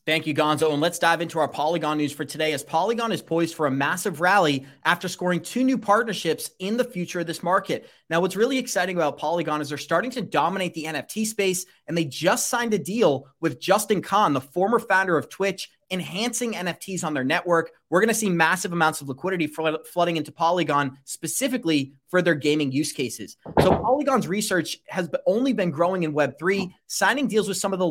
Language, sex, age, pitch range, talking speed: English, male, 30-49, 155-200 Hz, 205 wpm